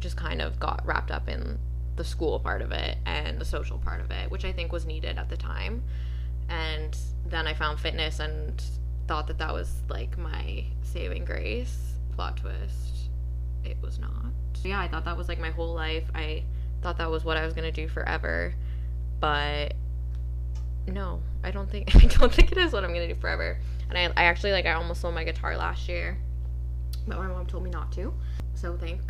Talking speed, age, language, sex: 205 wpm, 10-29, English, female